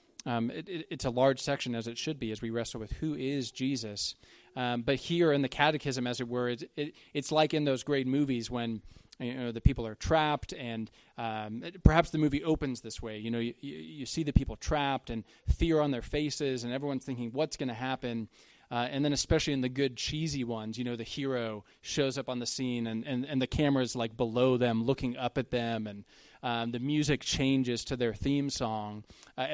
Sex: male